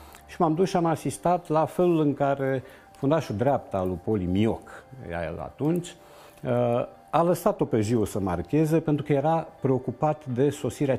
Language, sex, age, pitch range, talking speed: Romanian, male, 50-69, 100-155 Hz, 170 wpm